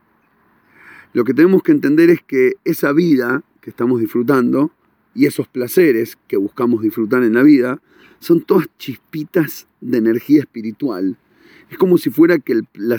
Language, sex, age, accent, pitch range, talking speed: Spanish, male, 40-59, Argentinian, 125-190 Hz, 150 wpm